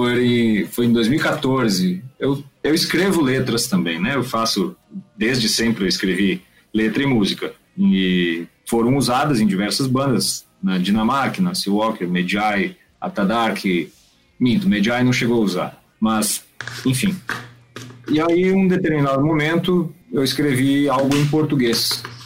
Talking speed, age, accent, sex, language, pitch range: 135 wpm, 40-59, Brazilian, male, Portuguese, 110-170 Hz